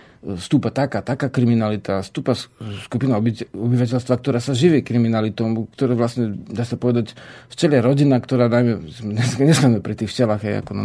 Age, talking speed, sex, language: 40-59, 160 wpm, male, Slovak